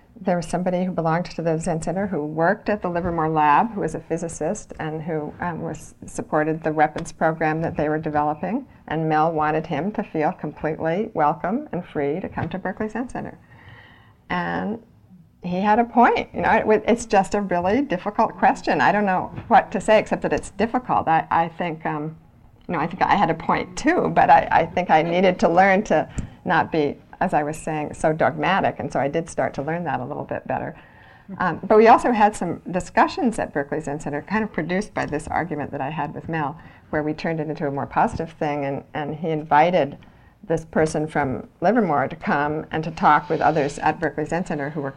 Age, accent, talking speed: 50-69, American, 220 wpm